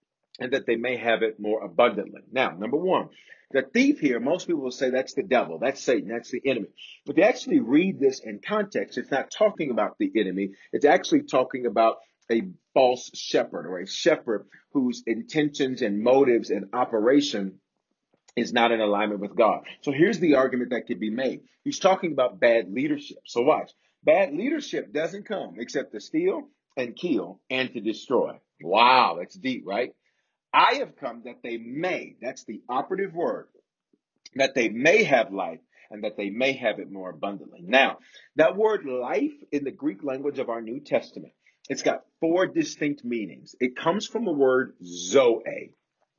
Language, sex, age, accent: English, male, 40-59, American